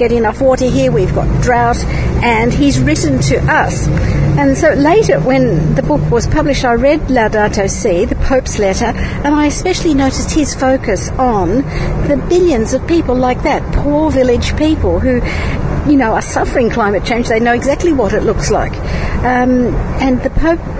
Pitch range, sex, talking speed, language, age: 215-265 Hz, female, 170 wpm, English, 60-79